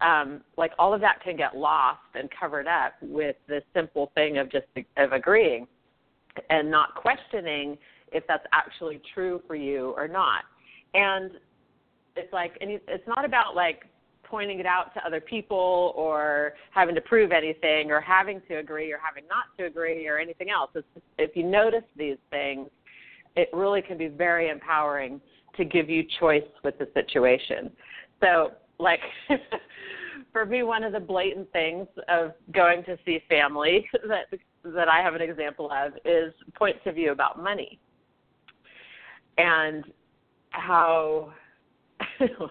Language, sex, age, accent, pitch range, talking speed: English, female, 40-59, American, 155-215 Hz, 150 wpm